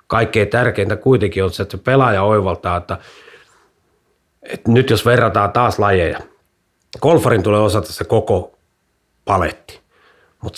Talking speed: 130 wpm